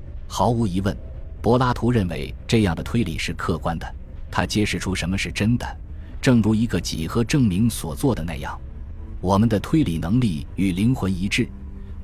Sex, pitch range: male, 80-110 Hz